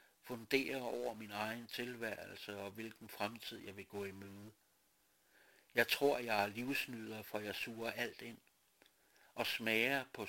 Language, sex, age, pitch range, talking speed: Danish, male, 60-79, 105-125 Hz, 145 wpm